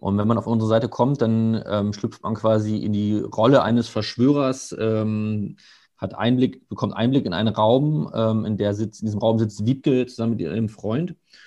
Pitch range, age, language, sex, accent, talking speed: 105-120 Hz, 30-49, German, male, German, 200 wpm